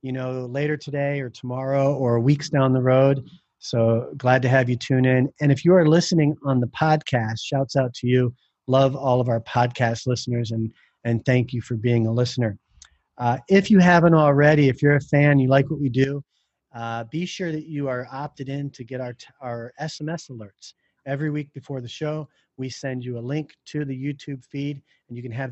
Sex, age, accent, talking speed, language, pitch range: male, 40-59, American, 210 wpm, English, 120-150 Hz